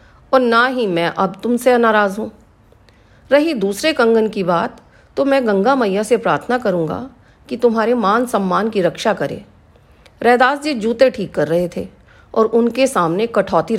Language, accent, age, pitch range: Hindi, native, 40-59, 185-245 Hz